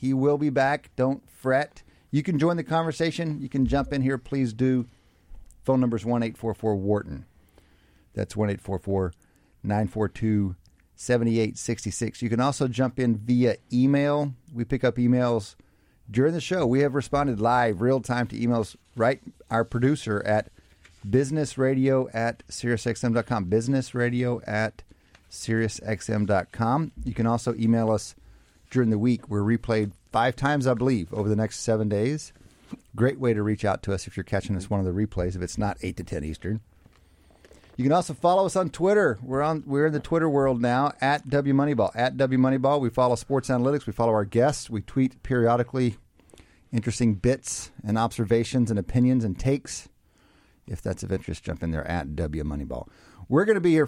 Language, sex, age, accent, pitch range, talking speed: English, male, 40-59, American, 105-130 Hz, 165 wpm